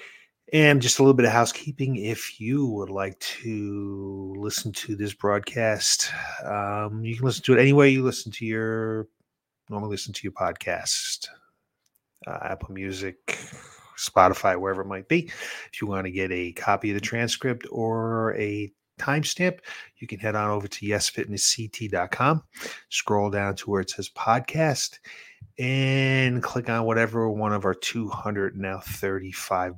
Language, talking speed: English, 155 wpm